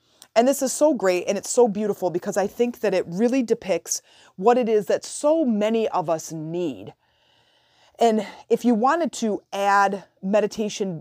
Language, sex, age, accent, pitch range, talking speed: English, female, 30-49, American, 165-210 Hz, 175 wpm